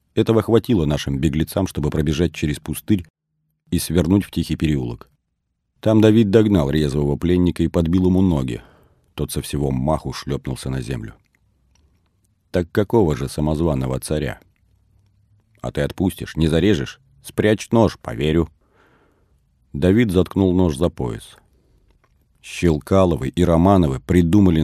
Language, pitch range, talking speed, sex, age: Russian, 75-95 Hz, 125 wpm, male, 40-59